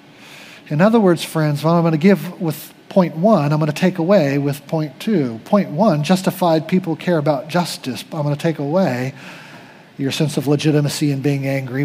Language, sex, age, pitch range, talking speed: English, male, 40-59, 145-180 Hz, 205 wpm